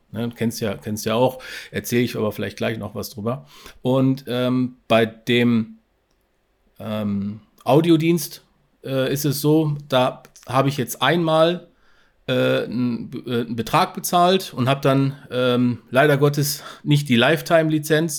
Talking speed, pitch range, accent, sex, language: 140 wpm, 115-145 Hz, German, male, German